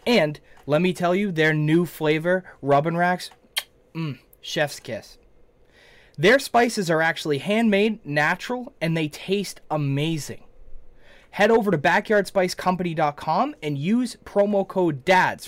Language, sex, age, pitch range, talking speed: English, male, 20-39, 145-195 Hz, 125 wpm